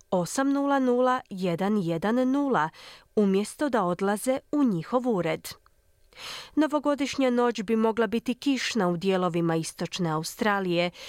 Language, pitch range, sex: Croatian, 180-255 Hz, female